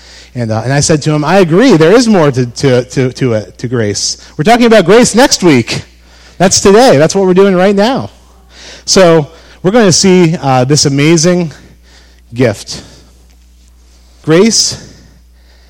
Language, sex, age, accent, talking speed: English, male, 30-49, American, 165 wpm